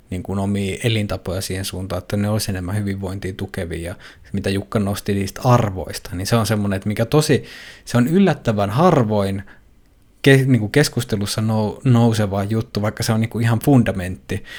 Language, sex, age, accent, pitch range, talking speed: Finnish, male, 20-39, native, 95-115 Hz, 150 wpm